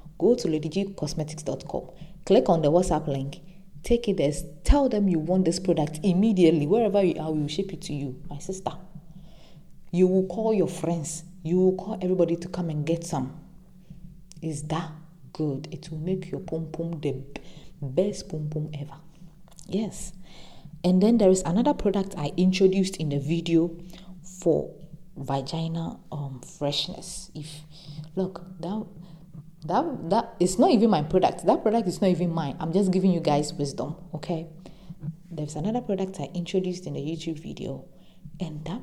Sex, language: female, English